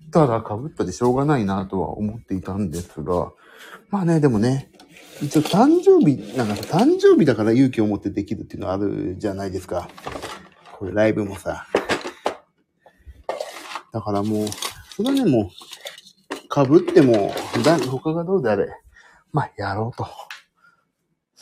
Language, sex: Japanese, male